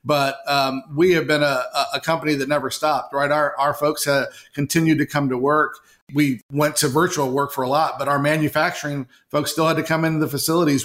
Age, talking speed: 40-59, 220 wpm